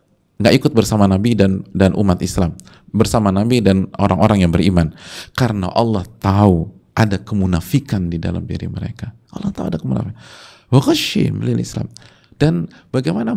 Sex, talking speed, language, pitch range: male, 130 wpm, Indonesian, 100-155 Hz